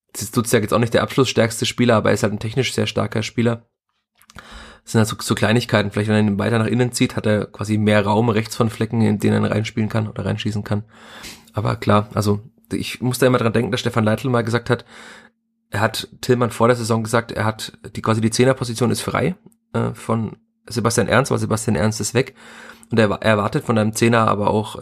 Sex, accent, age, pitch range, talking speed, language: male, German, 30-49, 105-120 Hz, 235 wpm, German